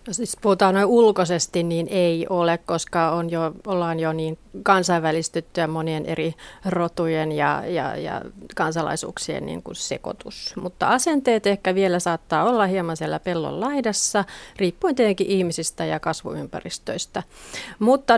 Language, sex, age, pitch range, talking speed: Finnish, female, 30-49, 175-240 Hz, 130 wpm